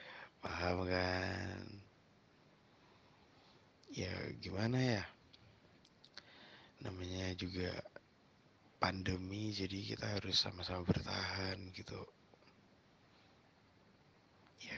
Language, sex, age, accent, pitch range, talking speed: Indonesian, male, 20-39, native, 90-105 Hz, 60 wpm